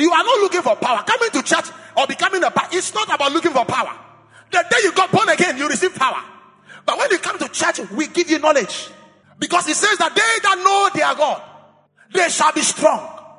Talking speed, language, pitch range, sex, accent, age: 235 wpm, English, 270-355 Hz, male, Nigerian, 30-49